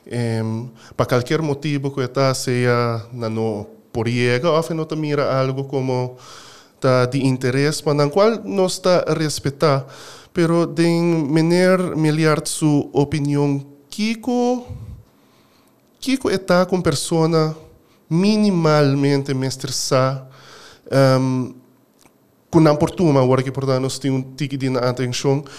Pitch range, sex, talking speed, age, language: 130-165 Hz, male, 95 wpm, 20-39, Spanish